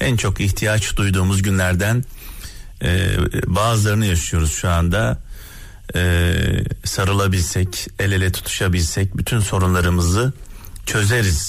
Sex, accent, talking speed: male, native, 95 wpm